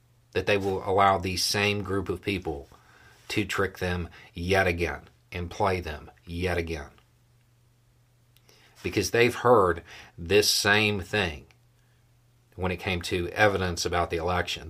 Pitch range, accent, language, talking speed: 90-120 Hz, American, English, 135 wpm